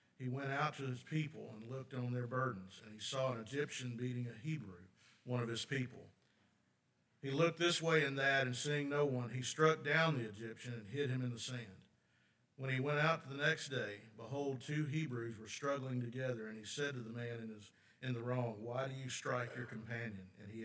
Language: English